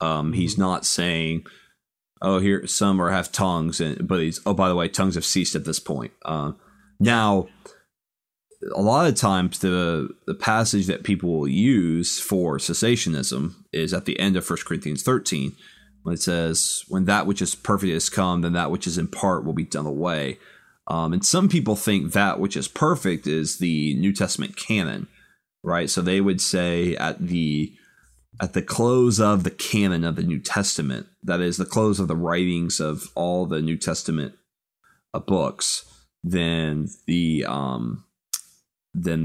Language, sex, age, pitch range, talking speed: English, male, 30-49, 80-100 Hz, 175 wpm